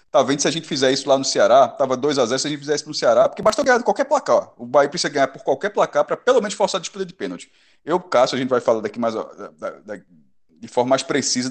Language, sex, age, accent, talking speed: Portuguese, male, 20-39, Brazilian, 275 wpm